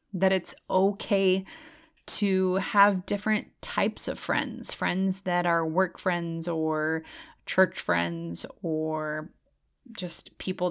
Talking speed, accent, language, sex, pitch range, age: 110 wpm, American, English, female, 175-205 Hz, 30-49